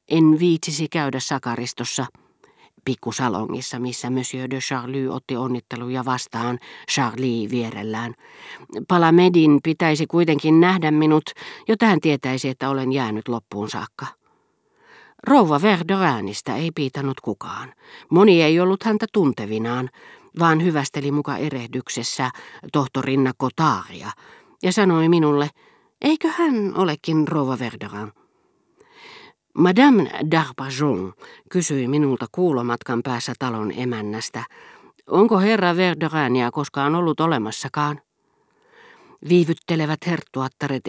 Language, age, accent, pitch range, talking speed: Finnish, 40-59, native, 125-175 Hz, 100 wpm